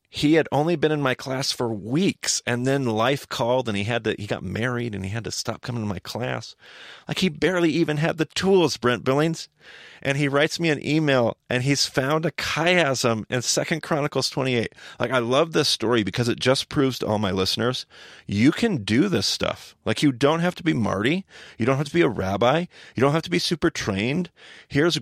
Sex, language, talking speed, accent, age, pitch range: male, English, 225 wpm, American, 40-59, 105-150 Hz